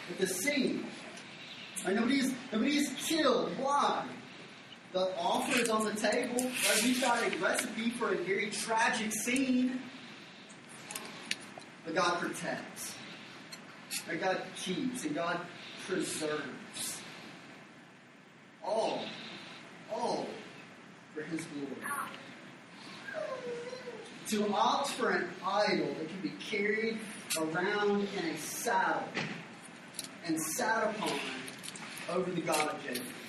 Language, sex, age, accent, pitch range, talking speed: English, male, 30-49, American, 205-260 Hz, 105 wpm